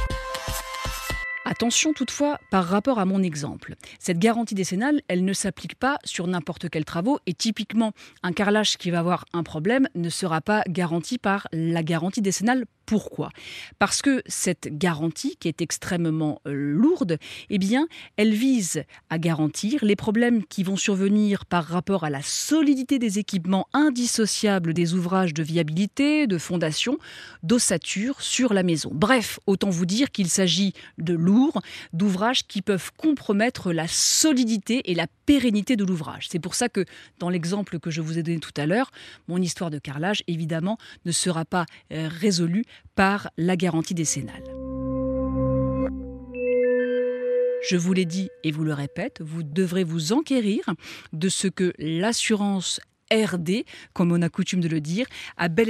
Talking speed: 155 wpm